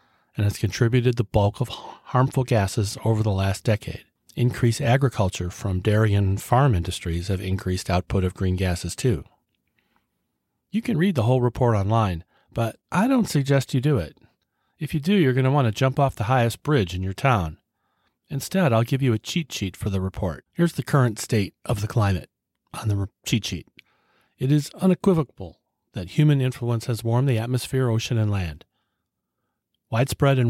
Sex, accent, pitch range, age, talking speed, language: male, American, 100-130 Hz, 40-59, 180 wpm, English